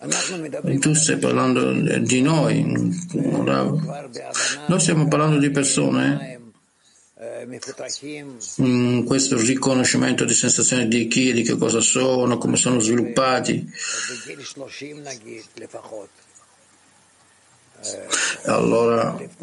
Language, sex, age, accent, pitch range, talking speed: Italian, male, 50-69, native, 115-150 Hz, 75 wpm